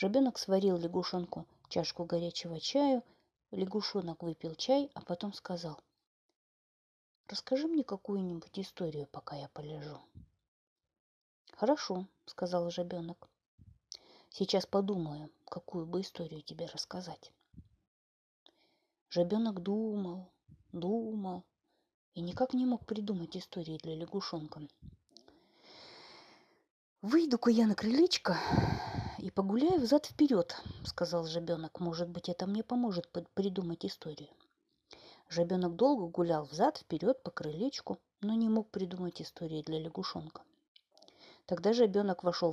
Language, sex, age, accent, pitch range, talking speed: Russian, female, 30-49, native, 170-215 Hz, 105 wpm